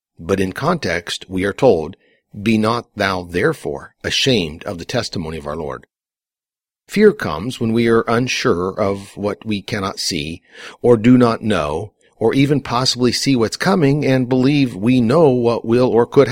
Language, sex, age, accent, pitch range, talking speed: English, male, 50-69, American, 100-130 Hz, 175 wpm